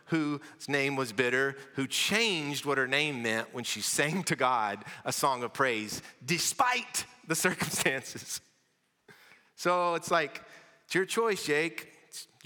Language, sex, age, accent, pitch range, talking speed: English, male, 40-59, American, 145-195 Hz, 145 wpm